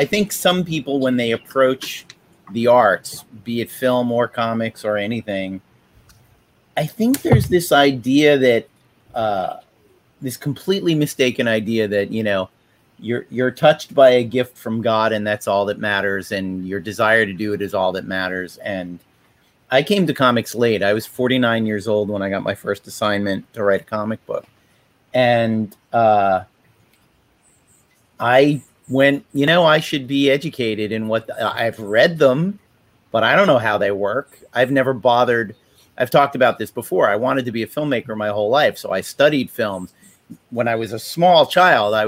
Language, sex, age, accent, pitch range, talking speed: English, male, 40-59, American, 110-135 Hz, 180 wpm